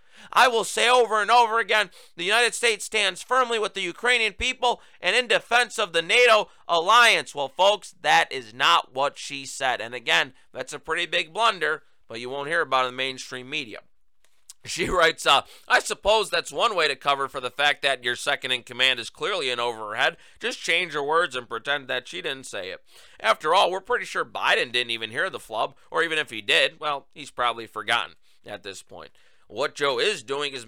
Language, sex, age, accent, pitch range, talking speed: English, male, 30-49, American, 130-210 Hz, 210 wpm